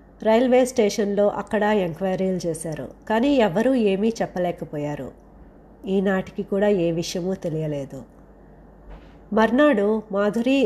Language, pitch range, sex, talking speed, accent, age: Telugu, 190-240 Hz, female, 90 wpm, native, 30-49